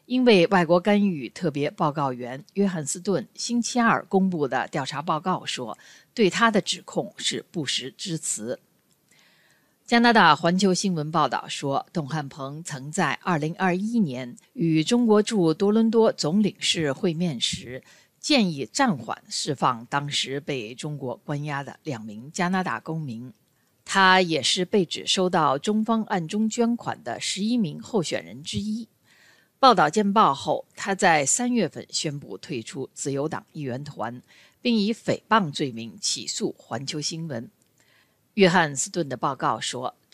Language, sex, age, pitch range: Chinese, female, 50-69, 145-205 Hz